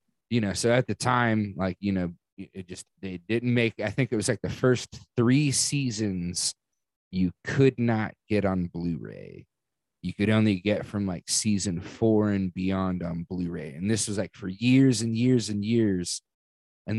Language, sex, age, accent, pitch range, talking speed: English, male, 30-49, American, 90-120 Hz, 185 wpm